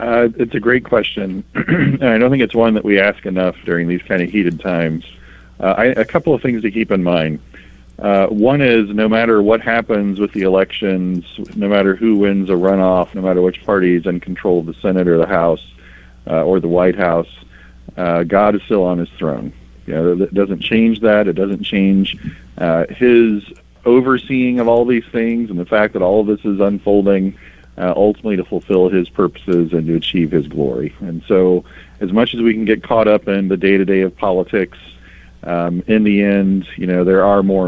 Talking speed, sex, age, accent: 210 wpm, male, 40-59, American